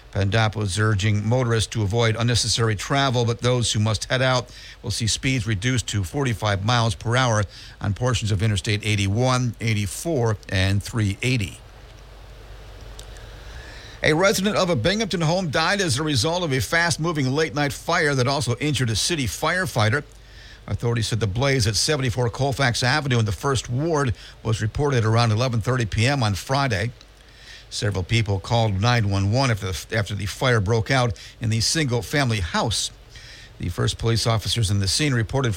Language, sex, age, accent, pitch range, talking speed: English, male, 50-69, American, 105-130 Hz, 155 wpm